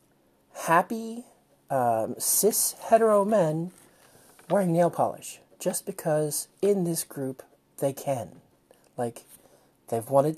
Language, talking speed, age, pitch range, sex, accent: English, 100 wpm, 40-59, 125-180 Hz, male, American